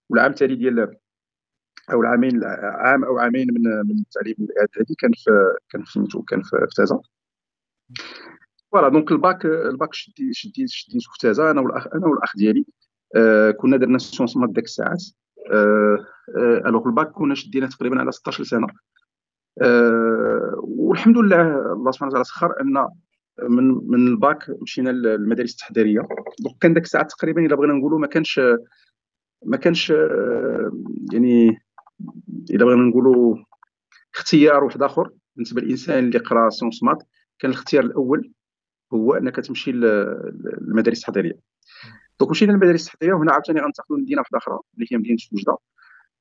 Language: Arabic